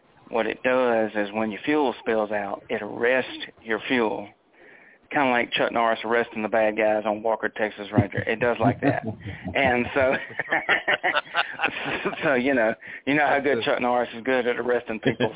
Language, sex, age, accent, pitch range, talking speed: English, male, 40-59, American, 110-125 Hz, 185 wpm